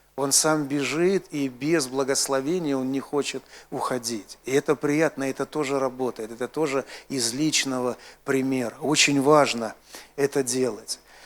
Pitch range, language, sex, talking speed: 130-165 Hz, Russian, male, 135 wpm